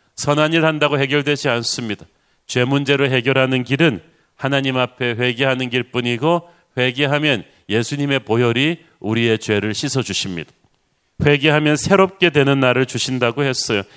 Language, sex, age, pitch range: Korean, male, 40-59, 125-160 Hz